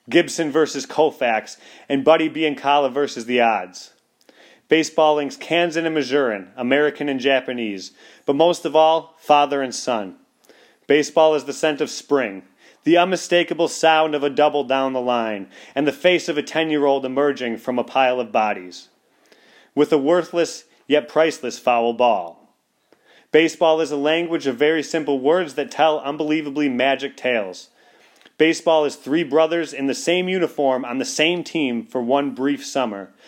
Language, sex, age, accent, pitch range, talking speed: English, male, 30-49, American, 130-155 Hz, 155 wpm